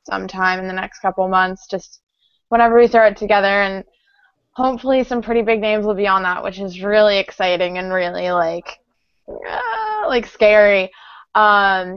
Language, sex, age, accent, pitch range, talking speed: English, female, 20-39, American, 185-215 Hz, 165 wpm